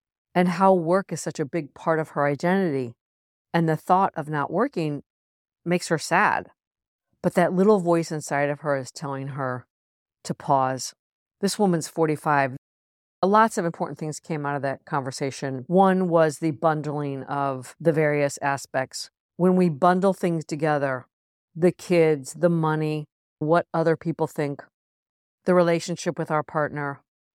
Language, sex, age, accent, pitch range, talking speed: English, female, 50-69, American, 145-175 Hz, 155 wpm